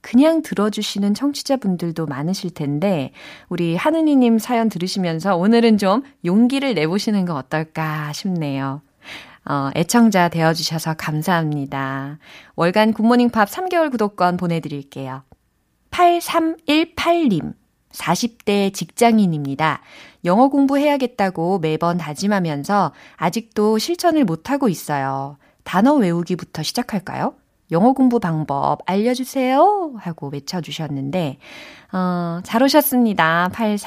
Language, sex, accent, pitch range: Korean, female, native, 155-230 Hz